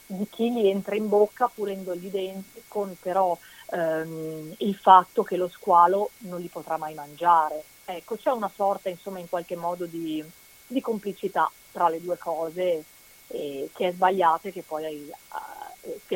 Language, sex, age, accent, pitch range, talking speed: Italian, female, 30-49, native, 175-210 Hz, 170 wpm